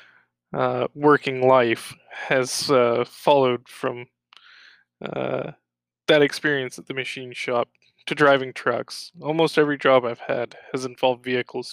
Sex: male